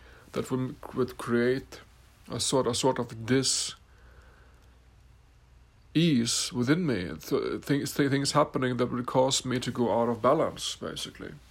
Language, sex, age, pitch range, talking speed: English, male, 60-79, 115-145 Hz, 130 wpm